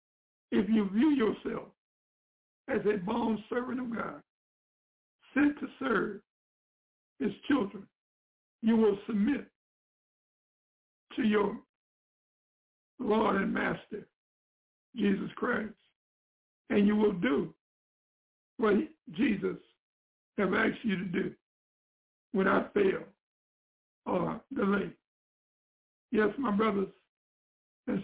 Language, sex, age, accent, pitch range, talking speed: English, male, 60-79, American, 205-230 Hz, 95 wpm